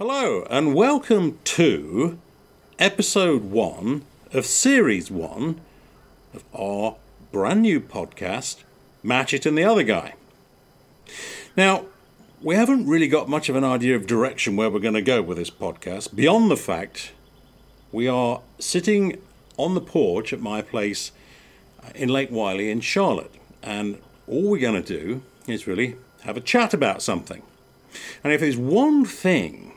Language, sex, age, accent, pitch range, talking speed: English, male, 50-69, British, 110-160 Hz, 150 wpm